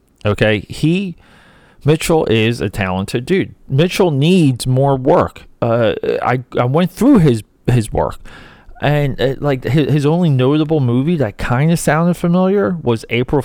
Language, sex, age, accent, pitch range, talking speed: English, male, 30-49, American, 105-155 Hz, 150 wpm